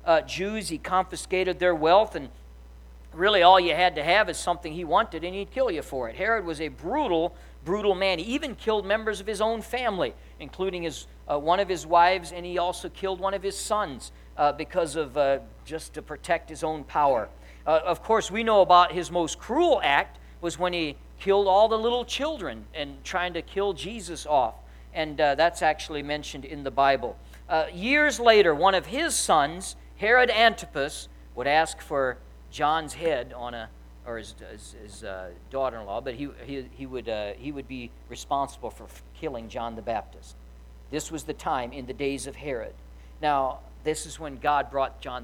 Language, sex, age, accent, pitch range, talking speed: English, male, 50-69, American, 115-180 Hz, 195 wpm